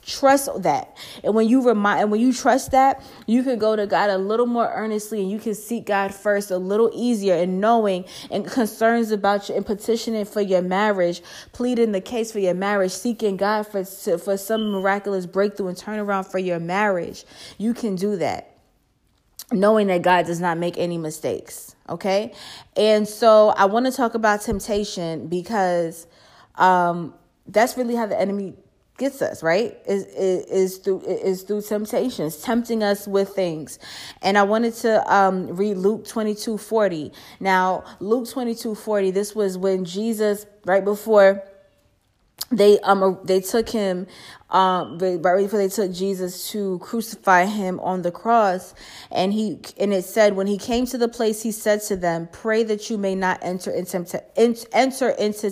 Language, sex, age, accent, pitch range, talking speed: English, female, 20-39, American, 185-220 Hz, 175 wpm